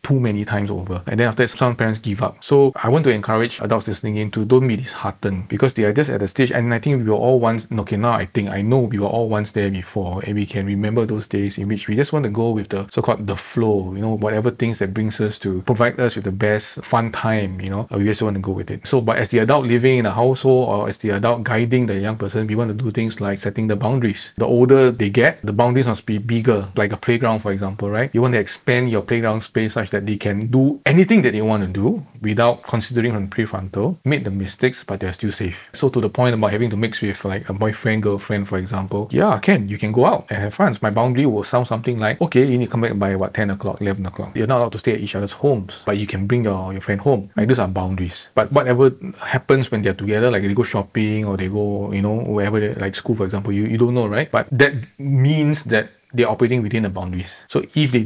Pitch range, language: 100-120 Hz, English